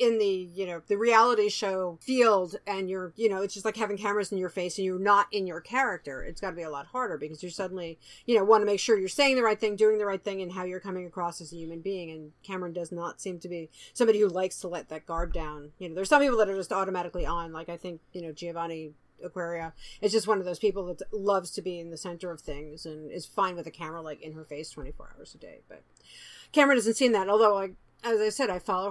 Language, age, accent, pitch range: English, 40-59, American, 180-220 Hz